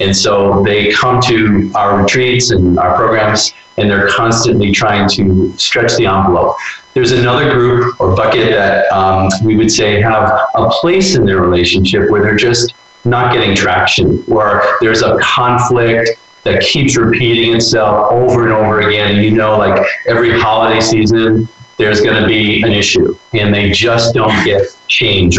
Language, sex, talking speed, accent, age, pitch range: English, male, 165 wpm, American, 40-59, 105-120 Hz